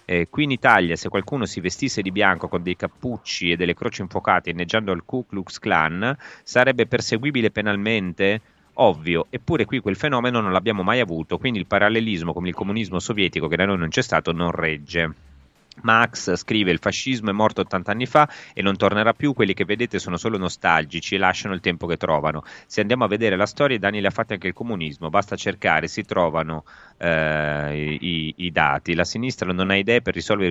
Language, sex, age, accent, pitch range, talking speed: Italian, male, 30-49, native, 80-105 Hz, 200 wpm